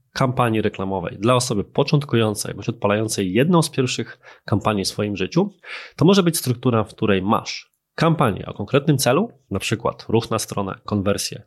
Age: 20-39